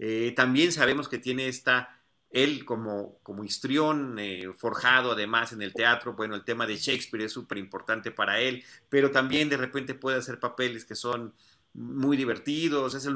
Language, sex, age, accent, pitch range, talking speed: Spanish, male, 40-59, Mexican, 110-150 Hz, 180 wpm